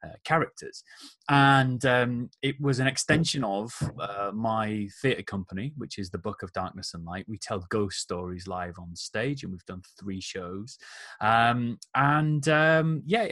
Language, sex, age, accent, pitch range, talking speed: English, male, 30-49, British, 100-140 Hz, 165 wpm